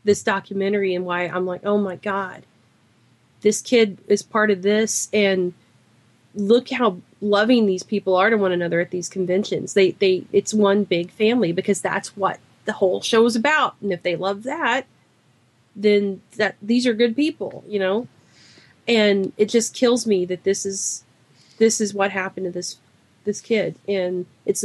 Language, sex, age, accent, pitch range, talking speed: English, female, 30-49, American, 180-205 Hz, 180 wpm